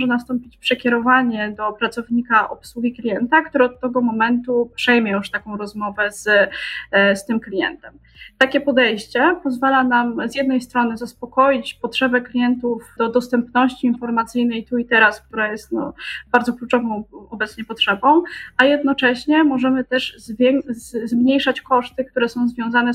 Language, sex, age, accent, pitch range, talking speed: Polish, female, 20-39, native, 225-255 Hz, 130 wpm